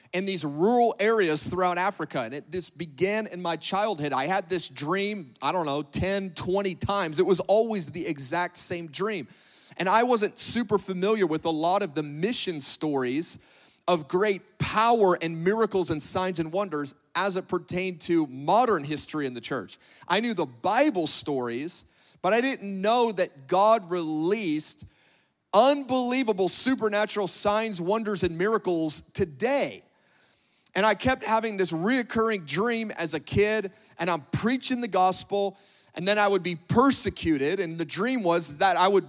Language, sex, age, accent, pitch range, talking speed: English, male, 30-49, American, 170-220 Hz, 165 wpm